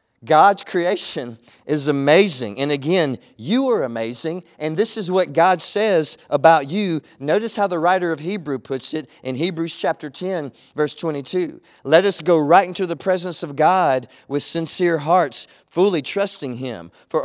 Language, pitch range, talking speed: English, 160-200 Hz, 165 wpm